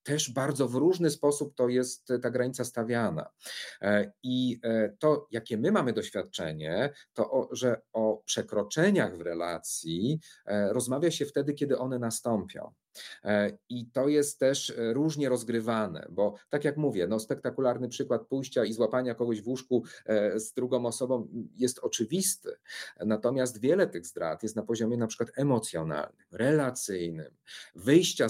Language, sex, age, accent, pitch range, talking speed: Polish, male, 40-59, native, 115-140 Hz, 135 wpm